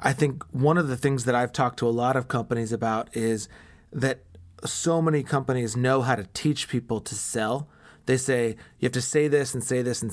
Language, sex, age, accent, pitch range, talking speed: English, male, 30-49, American, 115-140 Hz, 225 wpm